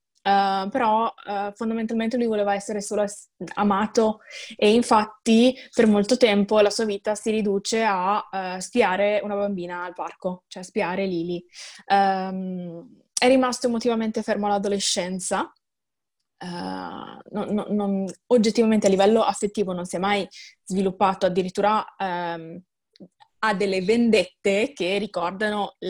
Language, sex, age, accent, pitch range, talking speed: Italian, female, 20-39, native, 190-220 Hz, 105 wpm